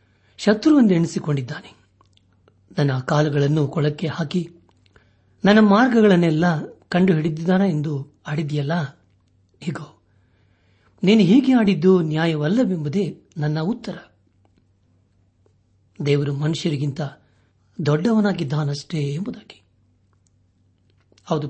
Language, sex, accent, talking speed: Kannada, male, native, 65 wpm